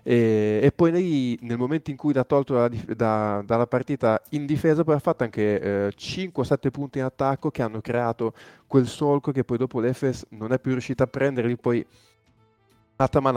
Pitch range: 110-130 Hz